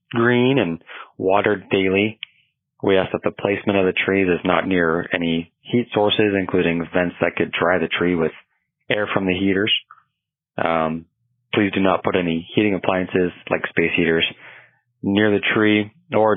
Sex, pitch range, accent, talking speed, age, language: male, 90-105 Hz, American, 165 wpm, 30-49, English